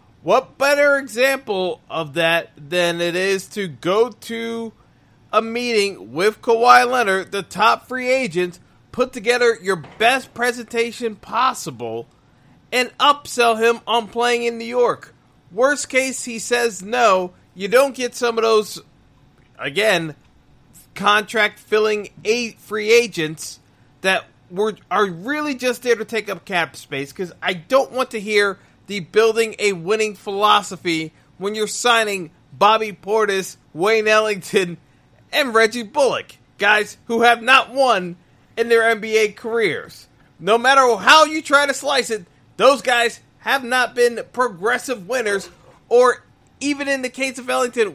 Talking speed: 140 wpm